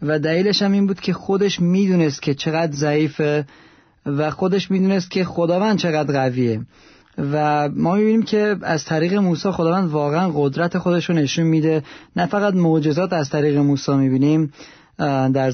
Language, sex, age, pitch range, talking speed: Persian, male, 40-59, 150-185 Hz, 150 wpm